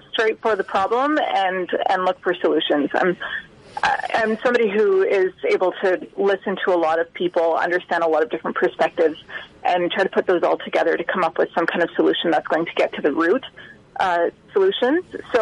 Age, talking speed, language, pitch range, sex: 30-49, 205 wpm, English, 180-280 Hz, female